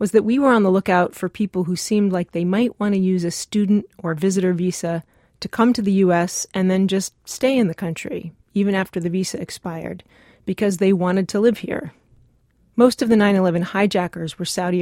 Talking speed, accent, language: 210 wpm, American, English